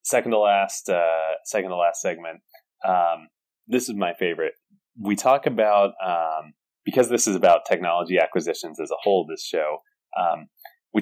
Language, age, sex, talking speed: English, 20-39, male, 165 wpm